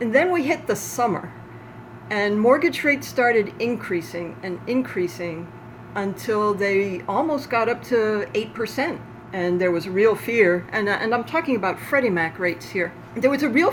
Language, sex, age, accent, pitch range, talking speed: English, female, 50-69, American, 170-225 Hz, 175 wpm